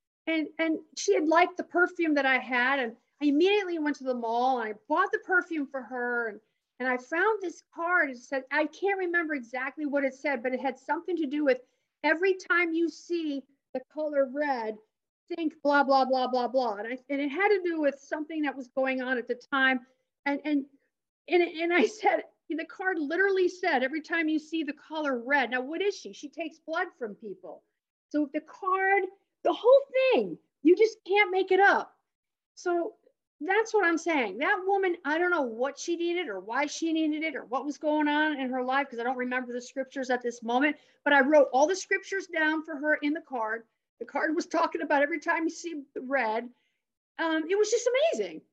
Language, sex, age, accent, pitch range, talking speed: English, female, 50-69, American, 265-355 Hz, 220 wpm